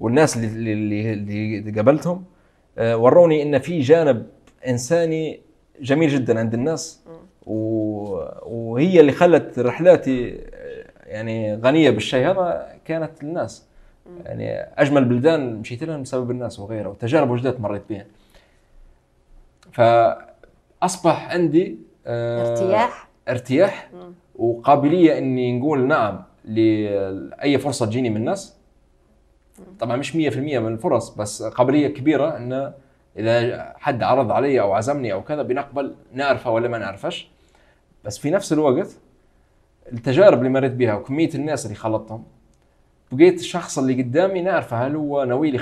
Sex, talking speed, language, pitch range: male, 120 wpm, Arabic, 110-160 Hz